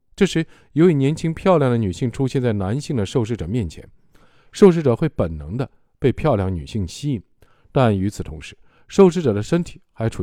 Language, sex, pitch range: Chinese, male, 95-150 Hz